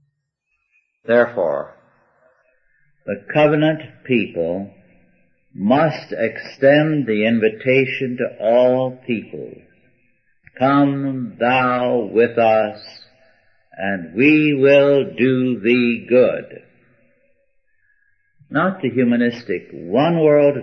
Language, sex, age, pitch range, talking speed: English, male, 60-79, 105-145 Hz, 75 wpm